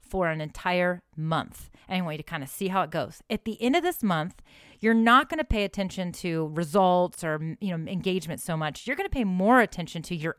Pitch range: 165-220 Hz